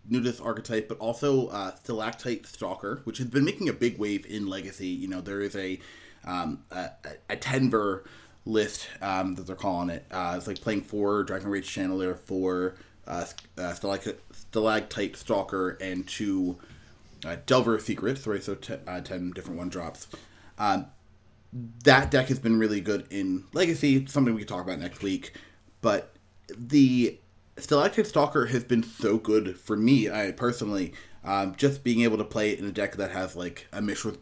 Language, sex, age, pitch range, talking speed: English, male, 30-49, 95-125 Hz, 175 wpm